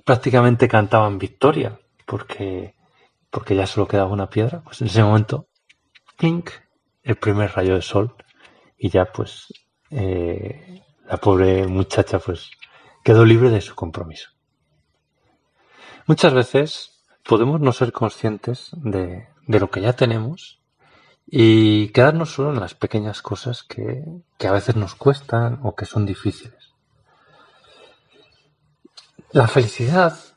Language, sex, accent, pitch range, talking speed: Spanish, male, Spanish, 105-135 Hz, 125 wpm